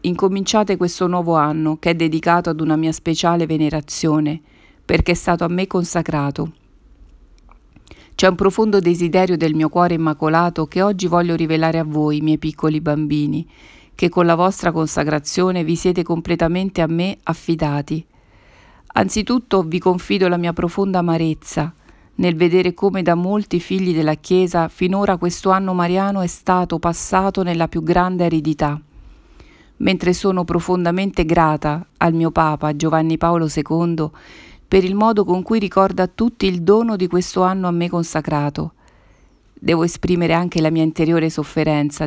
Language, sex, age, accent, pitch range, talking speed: Italian, female, 50-69, native, 155-185 Hz, 150 wpm